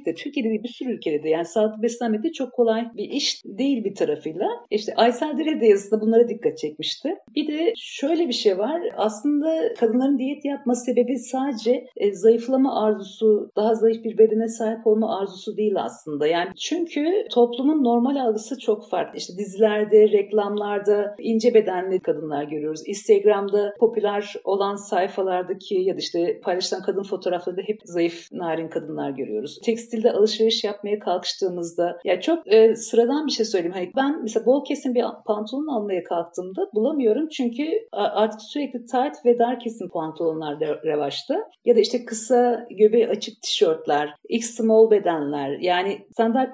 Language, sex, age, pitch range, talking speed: Turkish, female, 50-69, 200-255 Hz, 150 wpm